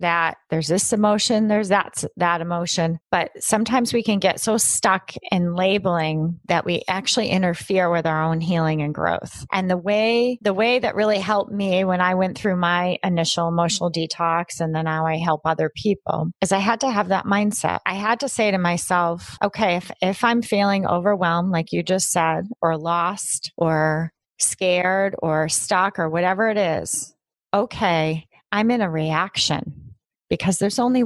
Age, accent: 30-49, American